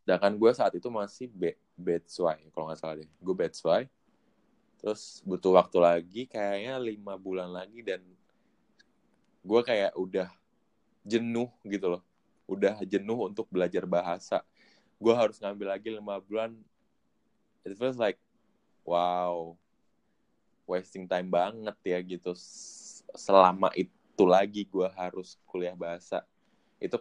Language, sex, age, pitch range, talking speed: Indonesian, male, 20-39, 90-105 Hz, 130 wpm